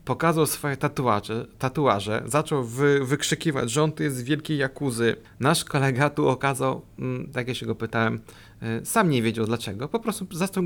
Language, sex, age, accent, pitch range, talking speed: Polish, male, 30-49, native, 115-155 Hz, 165 wpm